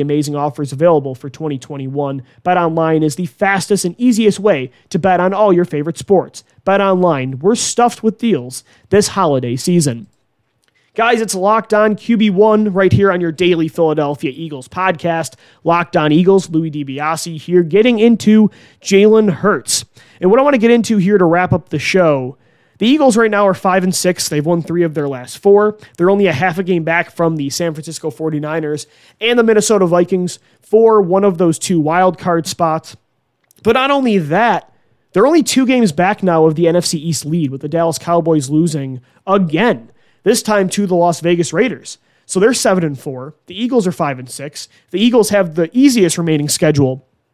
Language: English